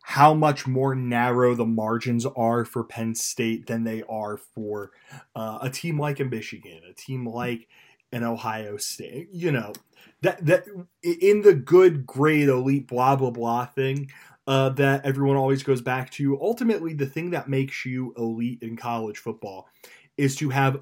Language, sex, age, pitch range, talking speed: English, male, 20-39, 115-135 Hz, 170 wpm